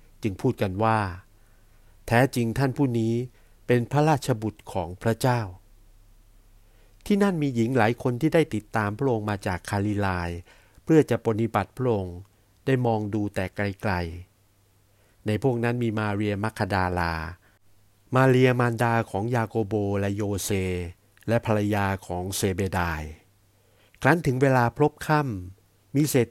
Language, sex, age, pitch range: Thai, male, 60-79, 100-120 Hz